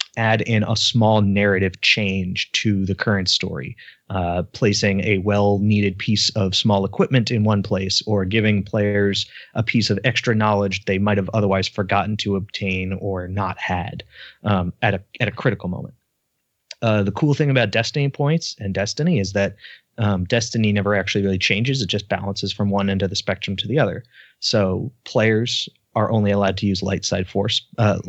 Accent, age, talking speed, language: American, 30-49, 185 wpm, English